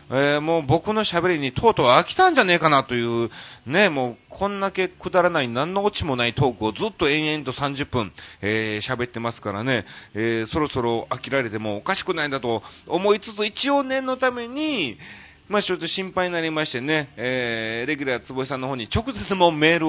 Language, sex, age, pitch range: Japanese, male, 30-49, 110-170 Hz